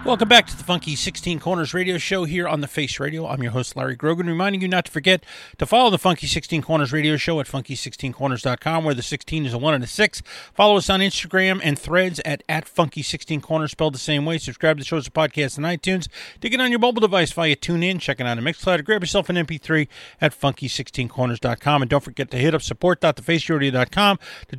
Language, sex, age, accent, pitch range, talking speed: English, male, 30-49, American, 140-185 Hz, 240 wpm